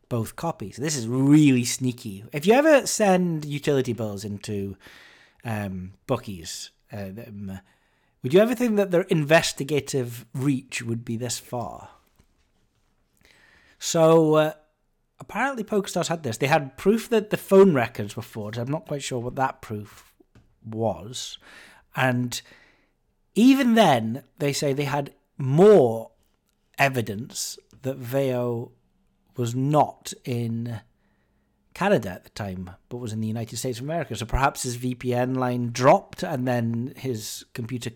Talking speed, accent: 140 wpm, British